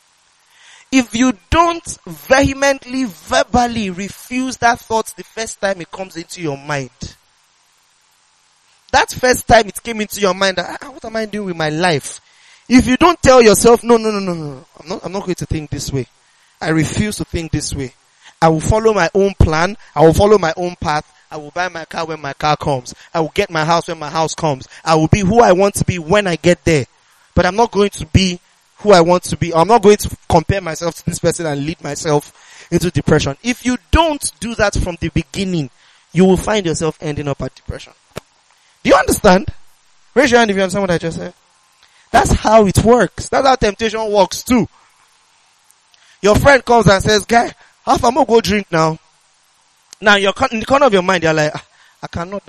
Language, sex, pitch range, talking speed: English, male, 155-220 Hz, 210 wpm